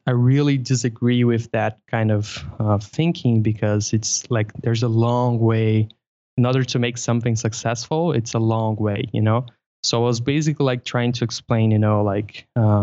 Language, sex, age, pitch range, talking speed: English, male, 20-39, 110-130 Hz, 185 wpm